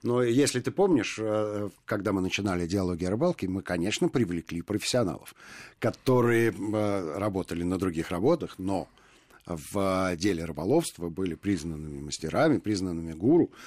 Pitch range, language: 85-115 Hz, Russian